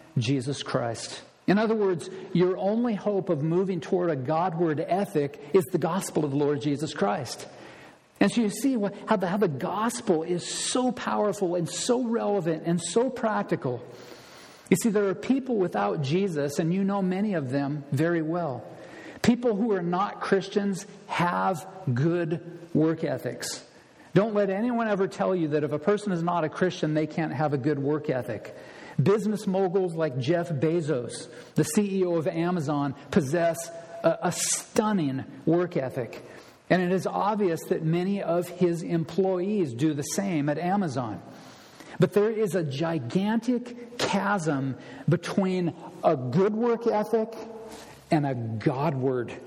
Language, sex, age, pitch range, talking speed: English, male, 50-69, 155-200 Hz, 155 wpm